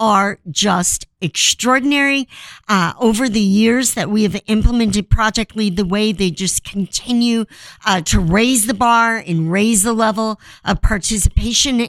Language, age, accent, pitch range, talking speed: English, 50-69, American, 185-230 Hz, 145 wpm